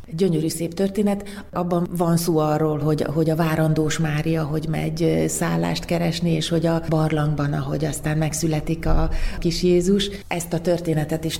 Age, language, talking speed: 30-49, Hungarian, 160 wpm